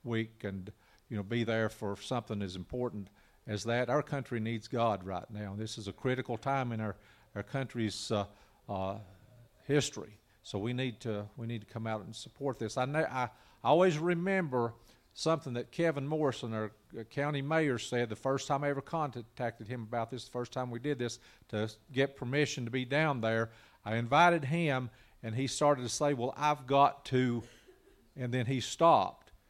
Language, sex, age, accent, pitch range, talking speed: English, male, 50-69, American, 110-140 Hz, 190 wpm